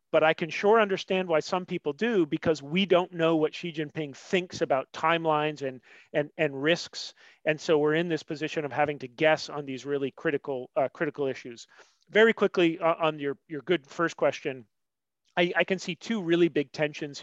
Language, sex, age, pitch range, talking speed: English, male, 40-59, 145-170 Hz, 200 wpm